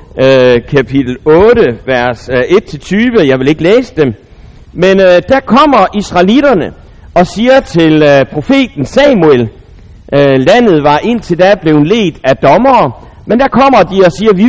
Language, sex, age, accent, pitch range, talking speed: Danish, male, 60-79, native, 140-220 Hz, 155 wpm